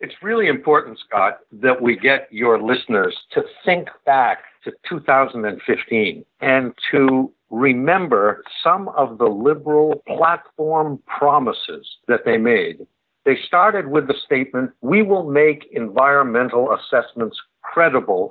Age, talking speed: 60-79, 120 wpm